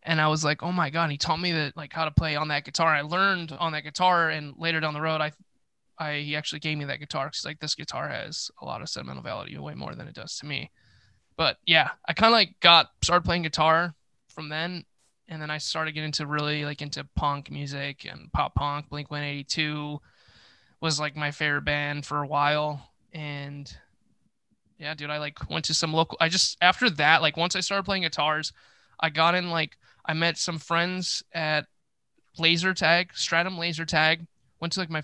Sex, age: male, 20-39